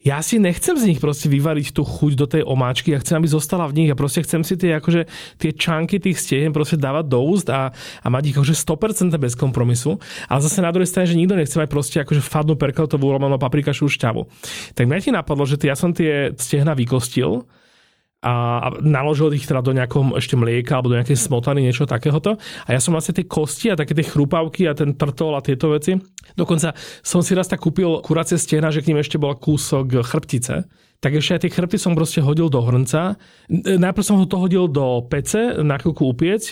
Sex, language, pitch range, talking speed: male, Slovak, 130-165 Hz, 210 wpm